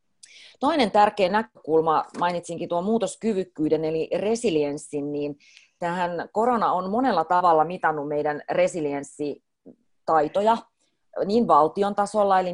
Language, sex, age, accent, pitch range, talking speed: Finnish, female, 30-49, native, 155-190 Hz, 100 wpm